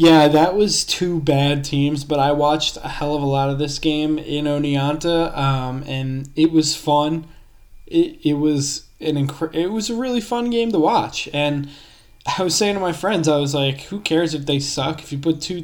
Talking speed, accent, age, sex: 215 wpm, American, 20-39, male